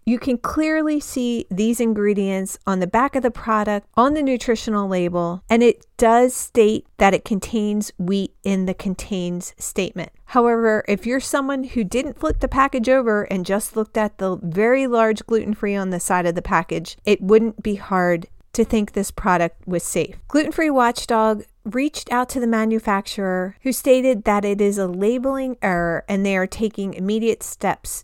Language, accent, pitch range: English, American, 195-250 Hz